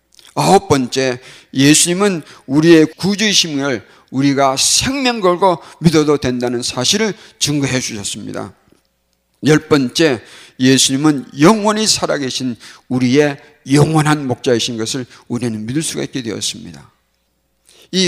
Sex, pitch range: male, 130-170 Hz